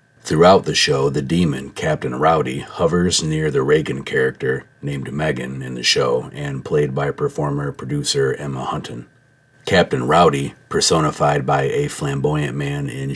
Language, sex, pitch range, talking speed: English, male, 70-80 Hz, 140 wpm